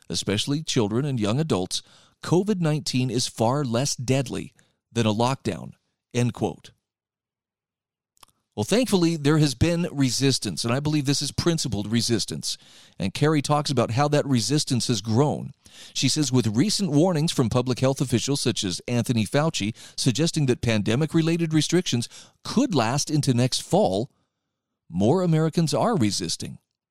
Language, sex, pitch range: English, male, 115-155 Hz